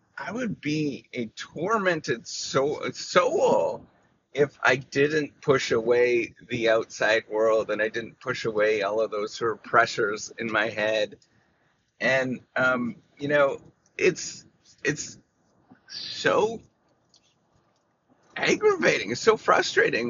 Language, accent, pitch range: English, American, 115-150 Hz